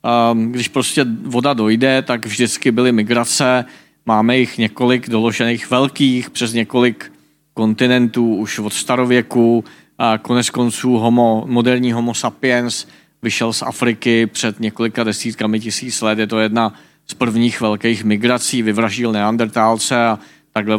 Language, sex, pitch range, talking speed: Czech, male, 110-125 Hz, 125 wpm